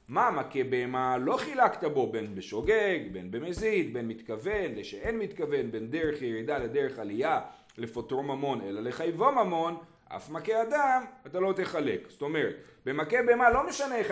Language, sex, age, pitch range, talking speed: Hebrew, male, 30-49, 150-235 Hz, 155 wpm